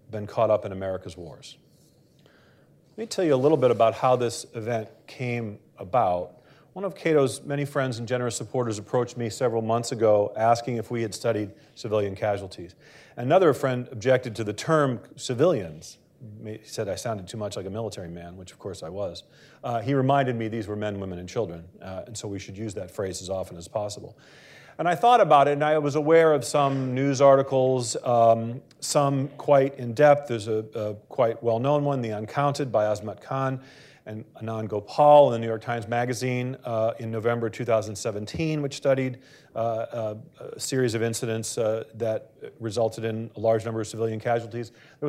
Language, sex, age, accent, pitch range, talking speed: English, male, 40-59, American, 110-140 Hz, 190 wpm